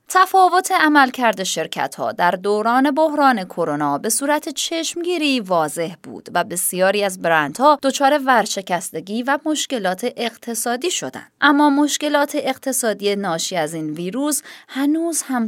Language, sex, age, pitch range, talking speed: Persian, female, 20-39, 185-290 Hz, 130 wpm